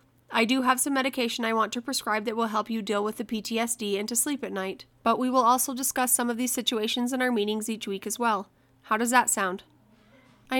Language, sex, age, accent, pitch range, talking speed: English, female, 20-39, American, 205-240 Hz, 245 wpm